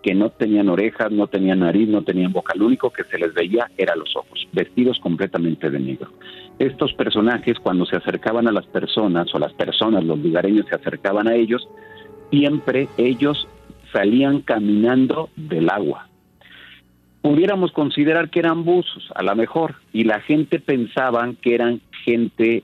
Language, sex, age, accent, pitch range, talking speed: Spanish, male, 50-69, Mexican, 100-130 Hz, 160 wpm